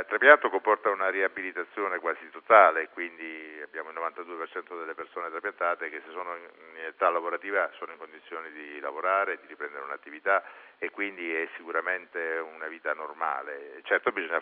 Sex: male